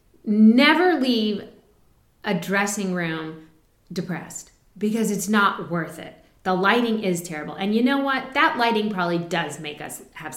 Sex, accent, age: female, American, 30-49